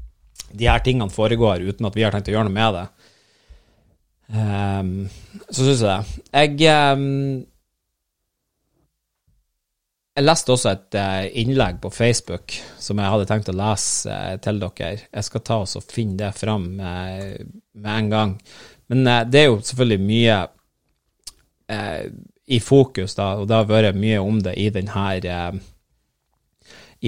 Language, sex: English, male